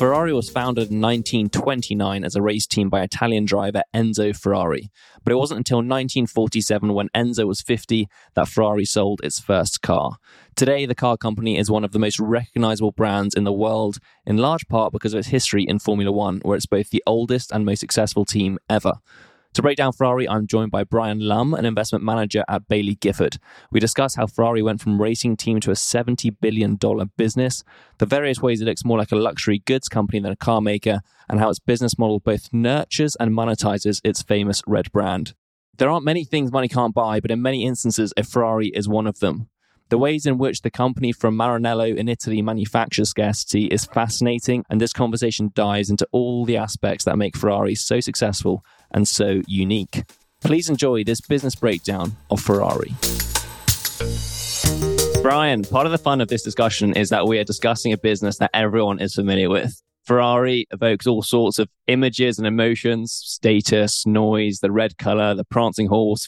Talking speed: 190 wpm